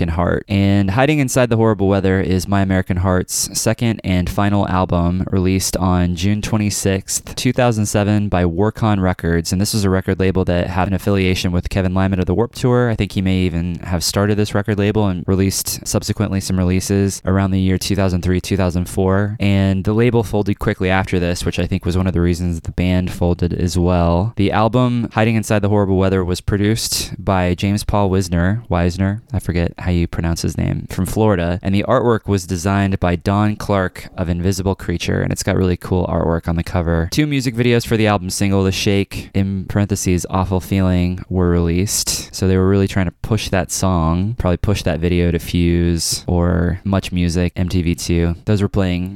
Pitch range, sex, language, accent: 90-105 Hz, male, English, American